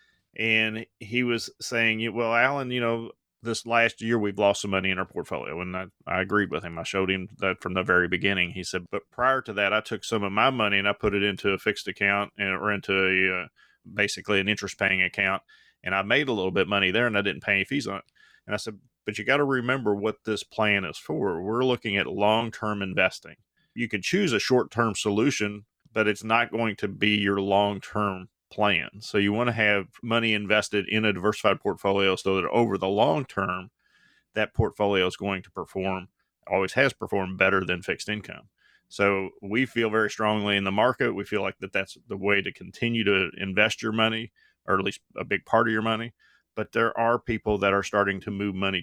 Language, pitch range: English, 95-115 Hz